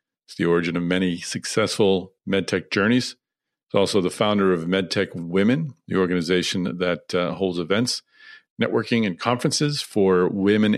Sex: male